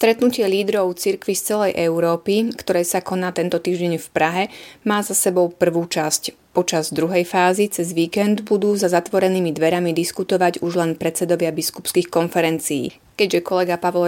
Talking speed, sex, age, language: 155 wpm, female, 30-49, Slovak